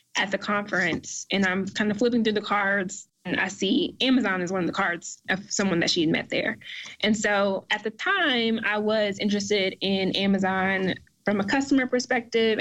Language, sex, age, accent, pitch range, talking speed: English, female, 20-39, American, 190-220 Hz, 190 wpm